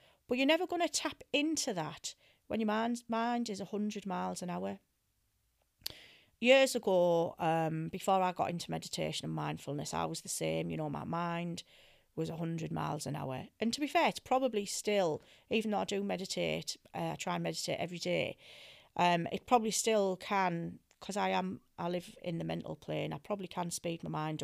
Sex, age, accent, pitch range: female, 40-59, British, 170-235 Hz